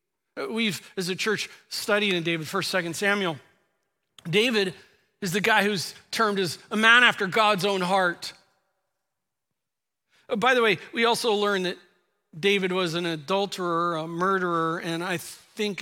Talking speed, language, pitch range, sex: 150 wpm, English, 170-210 Hz, male